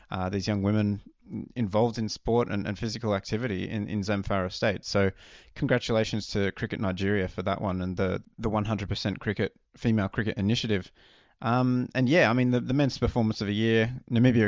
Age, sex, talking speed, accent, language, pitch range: 20-39, male, 180 wpm, Australian, English, 100-125 Hz